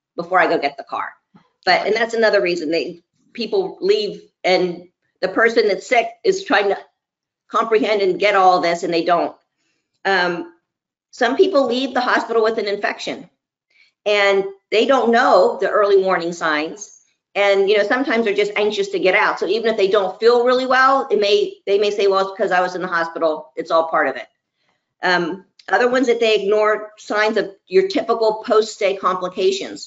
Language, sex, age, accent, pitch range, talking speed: English, female, 50-69, American, 180-230 Hz, 195 wpm